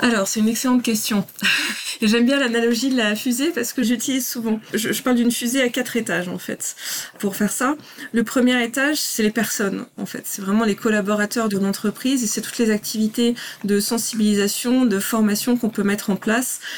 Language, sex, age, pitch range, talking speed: French, female, 20-39, 210-245 Hz, 200 wpm